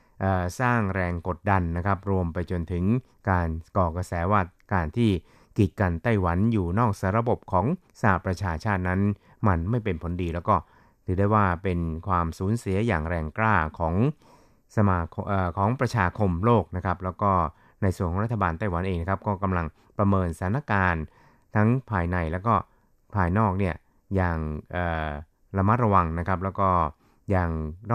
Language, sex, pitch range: Thai, male, 90-105 Hz